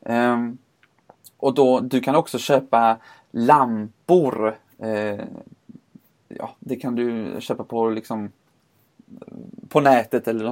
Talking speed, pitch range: 110 wpm, 120-165 Hz